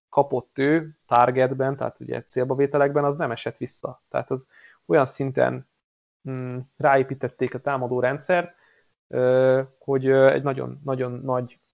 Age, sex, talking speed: 20-39, male, 120 wpm